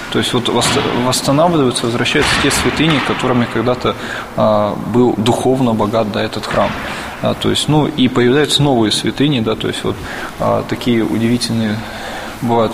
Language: Russian